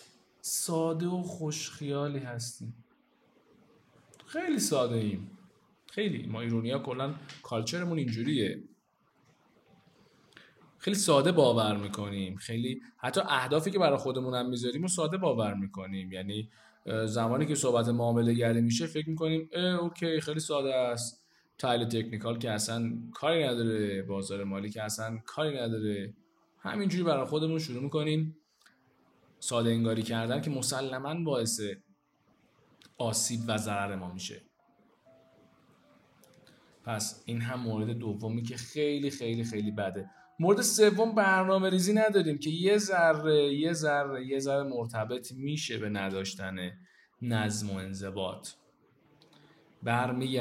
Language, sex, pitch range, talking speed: Persian, male, 110-155 Hz, 120 wpm